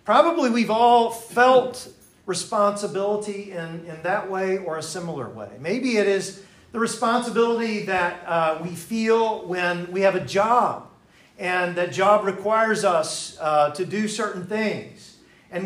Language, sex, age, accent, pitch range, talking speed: English, male, 50-69, American, 170-220 Hz, 145 wpm